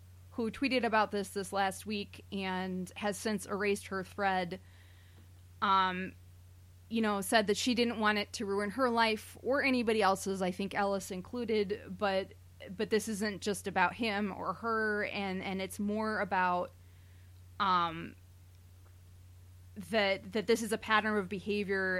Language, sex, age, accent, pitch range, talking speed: English, female, 20-39, American, 165-210 Hz, 155 wpm